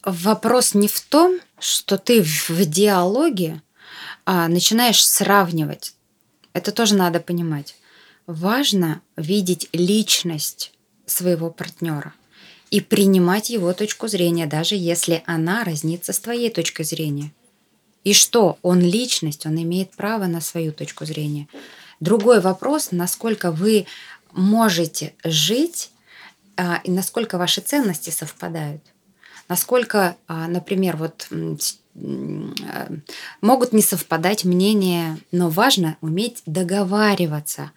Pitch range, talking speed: 165-205 Hz, 105 wpm